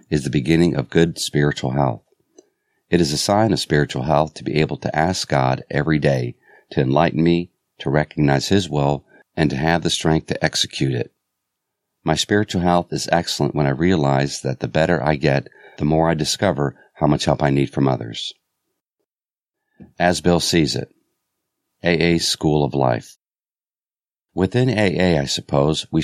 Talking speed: 170 wpm